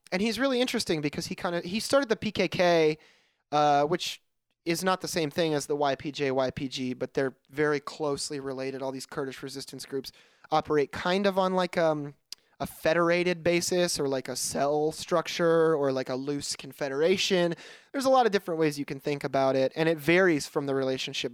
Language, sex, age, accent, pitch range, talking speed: English, male, 20-39, American, 135-170 Hz, 195 wpm